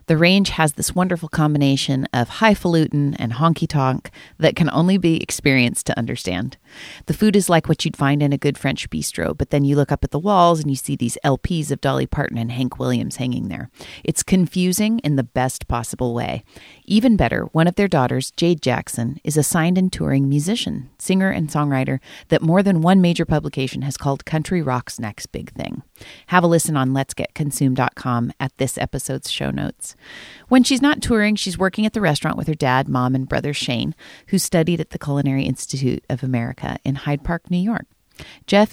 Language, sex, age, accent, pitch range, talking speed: English, female, 40-59, American, 130-175 Hz, 195 wpm